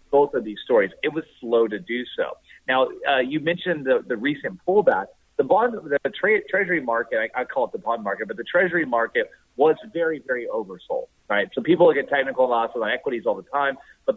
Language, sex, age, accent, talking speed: English, male, 30-49, American, 215 wpm